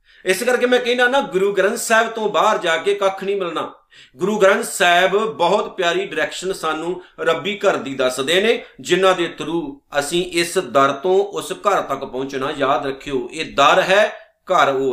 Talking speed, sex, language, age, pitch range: 180 wpm, male, Punjabi, 50-69, 170-225 Hz